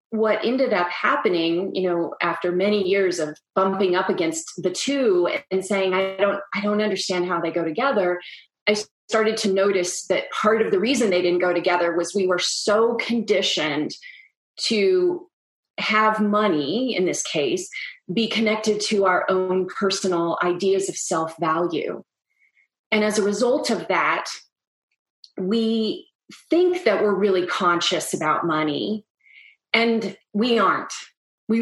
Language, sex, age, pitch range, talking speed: English, female, 30-49, 180-225 Hz, 145 wpm